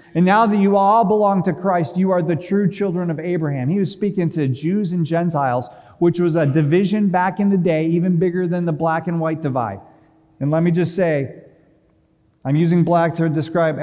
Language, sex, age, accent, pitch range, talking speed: English, male, 40-59, American, 145-175 Hz, 210 wpm